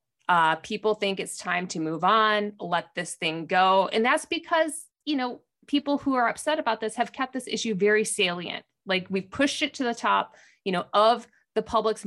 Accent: American